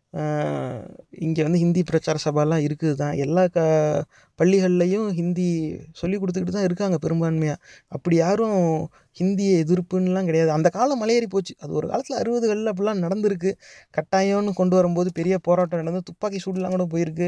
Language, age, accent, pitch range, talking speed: English, 30-49, Indian, 170-205 Hz, 125 wpm